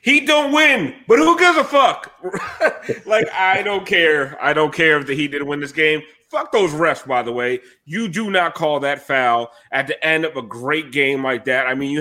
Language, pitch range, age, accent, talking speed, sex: English, 140-175 Hz, 30-49, American, 225 wpm, male